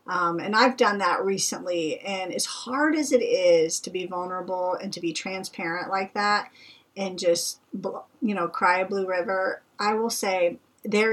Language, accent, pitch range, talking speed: English, American, 175-225 Hz, 180 wpm